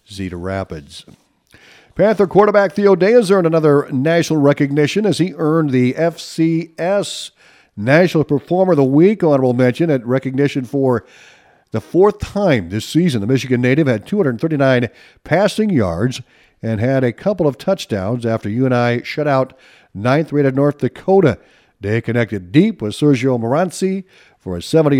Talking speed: 150 wpm